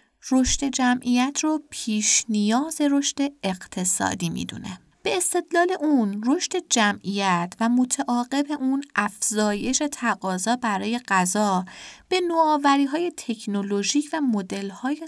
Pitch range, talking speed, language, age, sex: 195-255 Hz, 100 wpm, Persian, 30-49, female